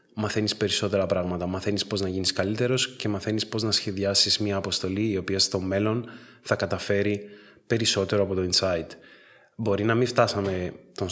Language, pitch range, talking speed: Greek, 95-115 Hz, 160 wpm